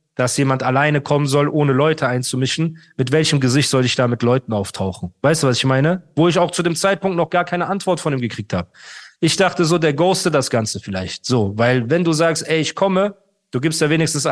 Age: 40-59